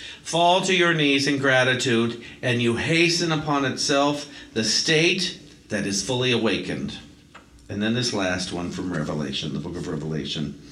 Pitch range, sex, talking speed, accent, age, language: 90-145 Hz, male, 155 wpm, American, 50-69, English